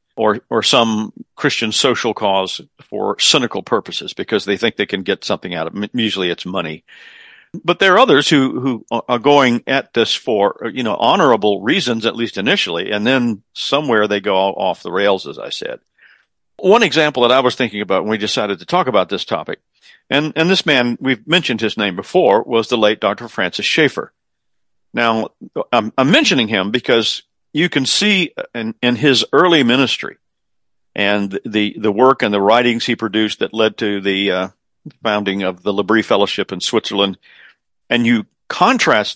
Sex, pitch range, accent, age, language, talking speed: male, 100-125 Hz, American, 50-69, English, 180 wpm